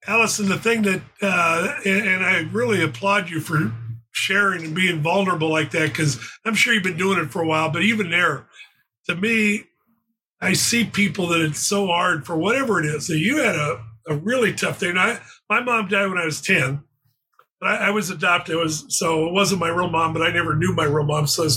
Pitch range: 155-190 Hz